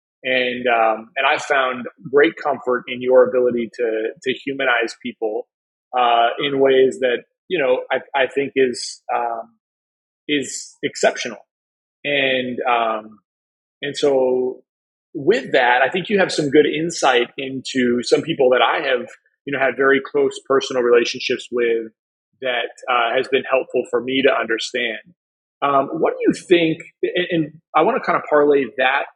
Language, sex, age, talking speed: English, male, 30-49, 160 wpm